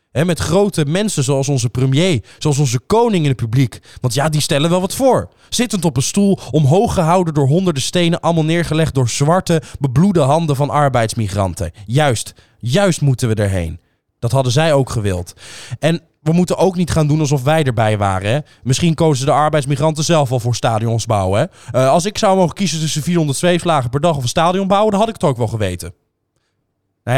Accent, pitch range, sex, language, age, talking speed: Dutch, 120-165 Hz, male, Dutch, 20-39, 195 wpm